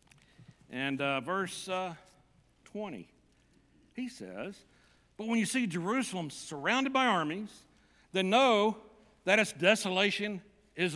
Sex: male